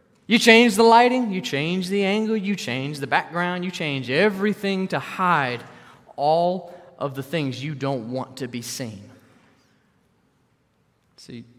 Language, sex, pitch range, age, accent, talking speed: English, male, 135-185 Hz, 20-39, American, 145 wpm